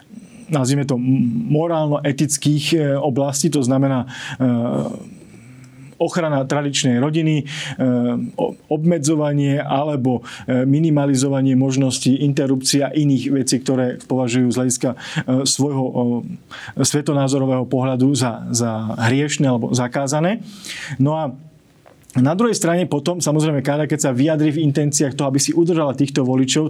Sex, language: male, Slovak